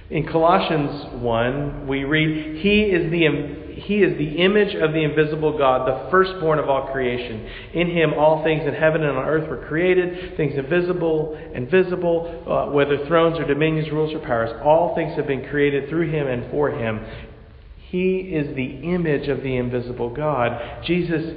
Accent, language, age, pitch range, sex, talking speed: American, English, 40-59, 115-155 Hz, male, 180 wpm